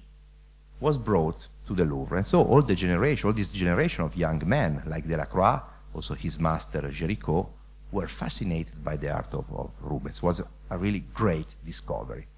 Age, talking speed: 50-69, 180 wpm